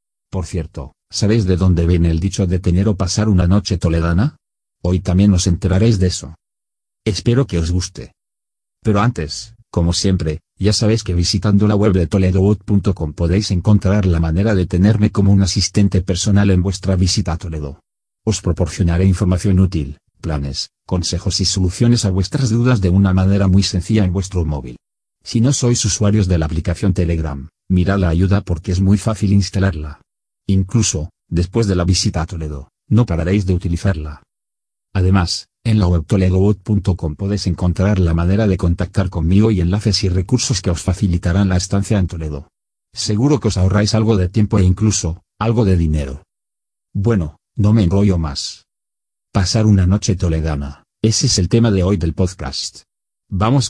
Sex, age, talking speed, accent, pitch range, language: male, 40-59, 170 wpm, Spanish, 85-105 Hz, Spanish